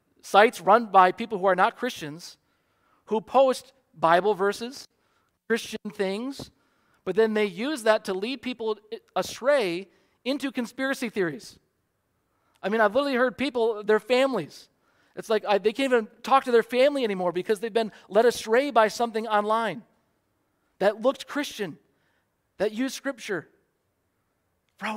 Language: English